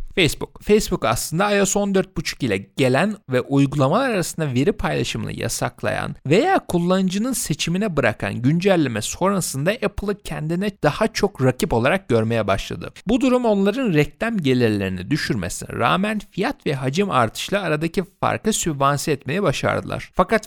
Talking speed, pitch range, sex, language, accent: 130 wpm, 130-205 Hz, male, Turkish, native